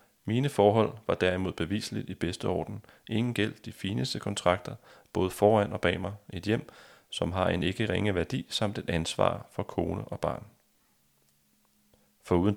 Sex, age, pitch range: male, 30-49, 90-110 Hz